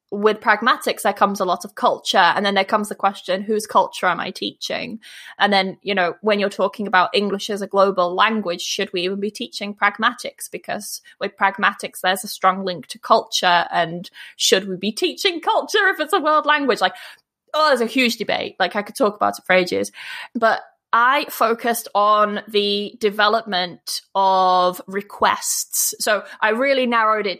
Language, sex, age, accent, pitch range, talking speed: English, female, 20-39, British, 195-240 Hz, 185 wpm